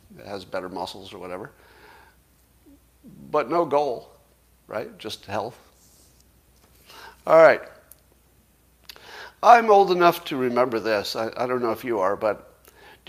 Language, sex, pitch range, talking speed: English, male, 115-155 Hz, 135 wpm